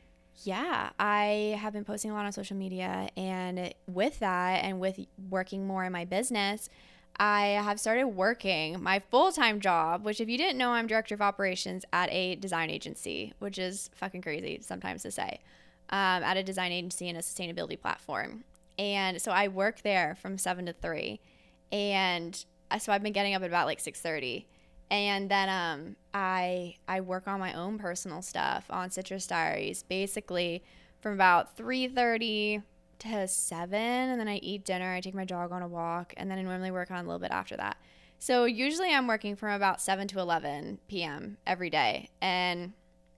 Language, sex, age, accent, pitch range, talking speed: English, female, 10-29, American, 180-205 Hz, 180 wpm